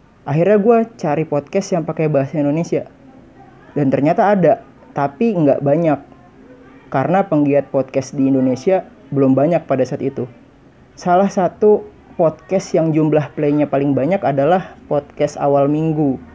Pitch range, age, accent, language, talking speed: 135-185 Hz, 30-49, native, Indonesian, 130 wpm